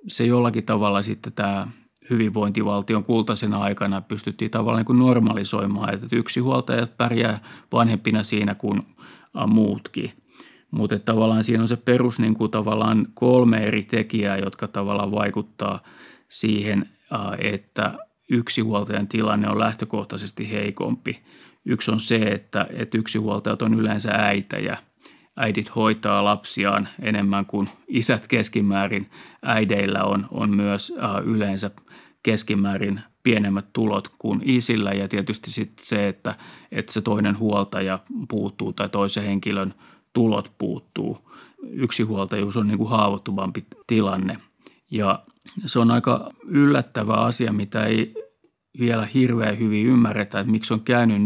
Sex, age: male, 30-49